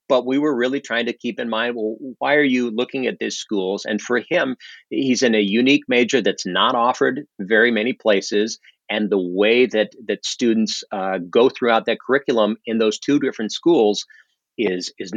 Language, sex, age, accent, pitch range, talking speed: English, male, 40-59, American, 105-125 Hz, 195 wpm